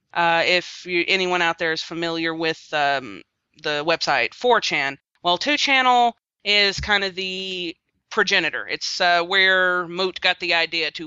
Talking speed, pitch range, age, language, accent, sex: 145 wpm, 175-220 Hz, 30-49, English, American, female